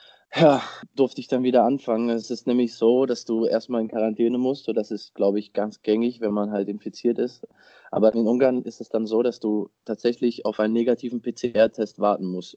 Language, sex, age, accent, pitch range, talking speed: German, male, 20-39, German, 110-125 Hz, 210 wpm